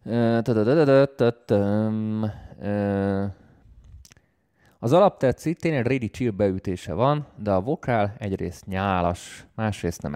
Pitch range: 95-120 Hz